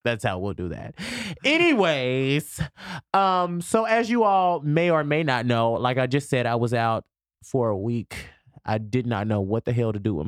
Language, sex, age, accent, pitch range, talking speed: English, male, 20-39, American, 95-125 Hz, 210 wpm